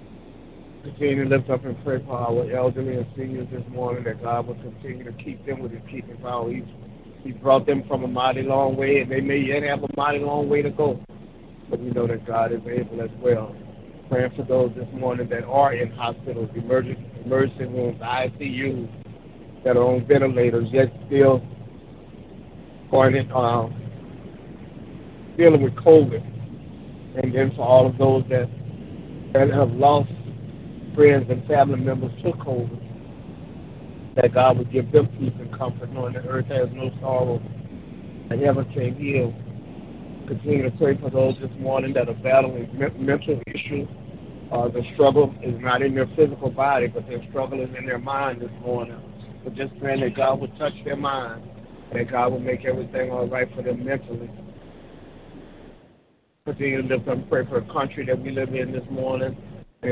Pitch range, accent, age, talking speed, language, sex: 120-135 Hz, American, 50-69, 175 wpm, English, male